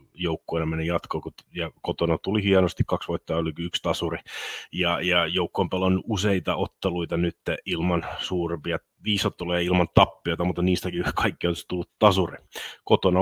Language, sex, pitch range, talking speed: Finnish, male, 90-105 Hz, 140 wpm